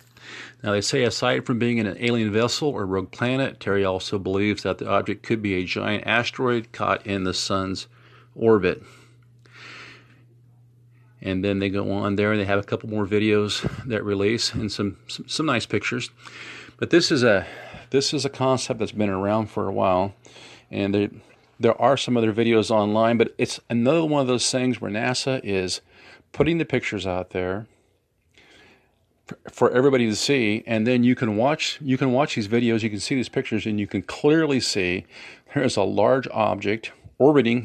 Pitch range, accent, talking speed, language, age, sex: 105-125 Hz, American, 190 wpm, English, 40-59, male